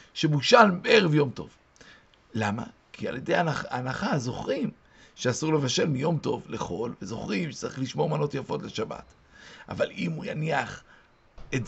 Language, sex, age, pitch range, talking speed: Hebrew, male, 50-69, 135-180 Hz, 140 wpm